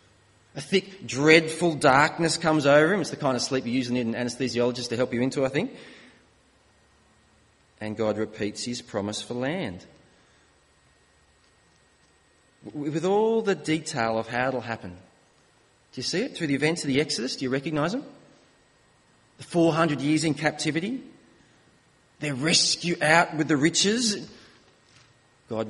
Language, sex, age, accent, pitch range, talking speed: English, male, 30-49, Australian, 120-185 Hz, 150 wpm